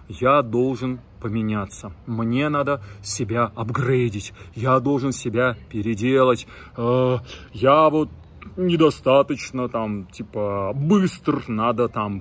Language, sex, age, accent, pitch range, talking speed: Russian, male, 30-49, native, 110-145 Hz, 95 wpm